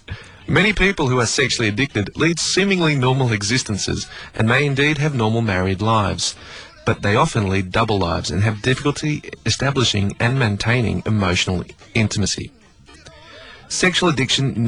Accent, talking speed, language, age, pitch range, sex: Australian, 135 wpm, English, 30-49, 100-130 Hz, male